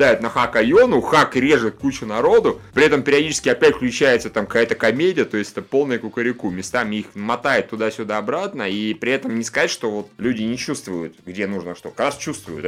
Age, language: 20-39, Russian